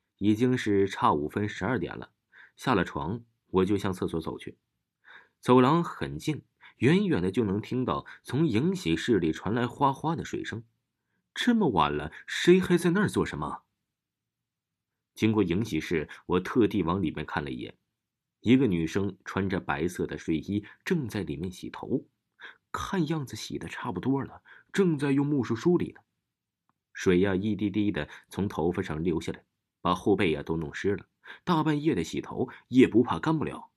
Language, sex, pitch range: Chinese, male, 95-145 Hz